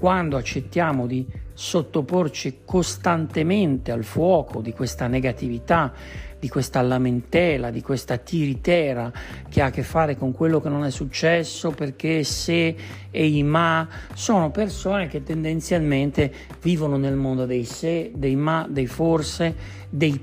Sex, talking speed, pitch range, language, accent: male, 135 wpm, 130-165 Hz, Italian, native